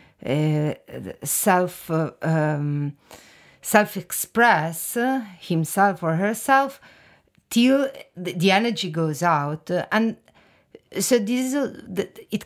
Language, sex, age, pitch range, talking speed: German, female, 50-69, 160-210 Hz, 85 wpm